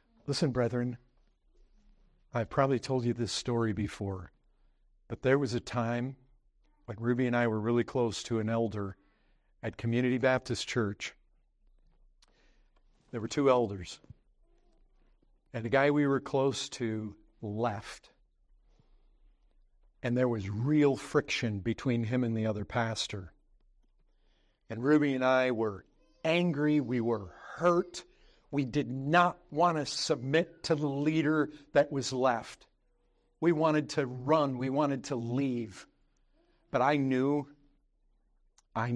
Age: 50-69